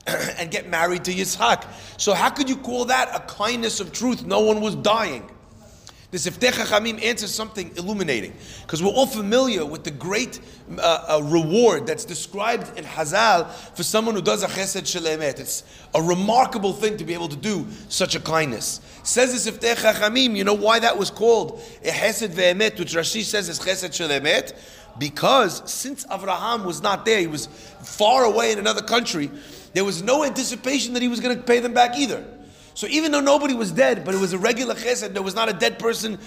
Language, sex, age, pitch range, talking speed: English, male, 30-49, 190-245 Hz, 200 wpm